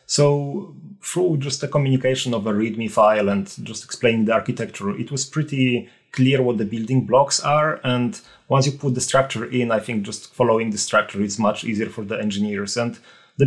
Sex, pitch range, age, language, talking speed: male, 110-135 Hz, 30-49, English, 195 wpm